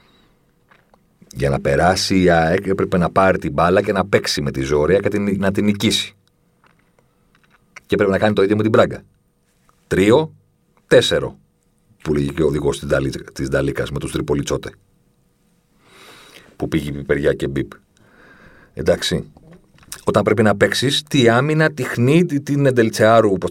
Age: 40-59